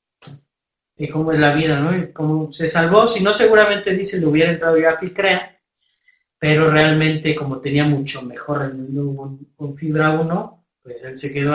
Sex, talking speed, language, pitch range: male, 175 wpm, Spanish, 145-180 Hz